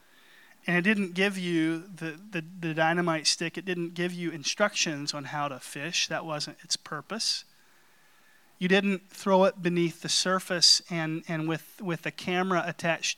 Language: English